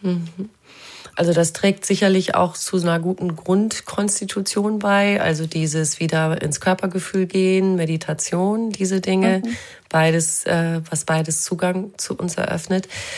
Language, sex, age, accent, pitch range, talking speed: German, female, 30-49, German, 160-190 Hz, 120 wpm